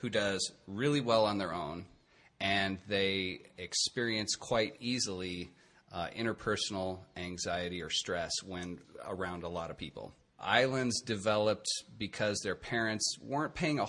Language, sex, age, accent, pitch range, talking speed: English, male, 30-49, American, 95-120 Hz, 135 wpm